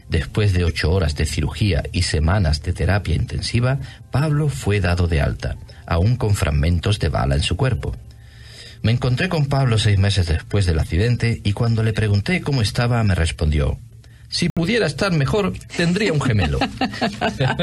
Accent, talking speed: Spanish, 165 wpm